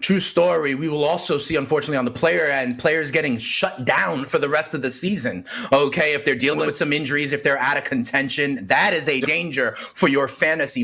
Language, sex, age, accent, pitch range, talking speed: English, male, 30-49, American, 145-235 Hz, 220 wpm